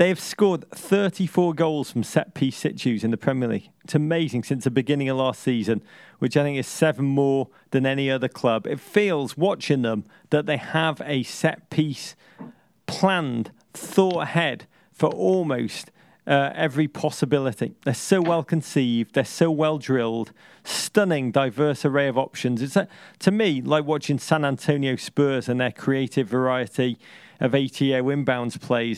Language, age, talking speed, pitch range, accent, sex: English, 40-59, 160 wpm, 135-180 Hz, British, male